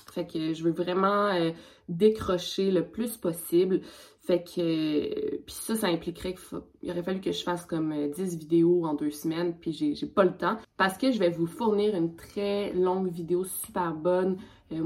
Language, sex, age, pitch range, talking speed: French, female, 20-39, 170-215 Hz, 185 wpm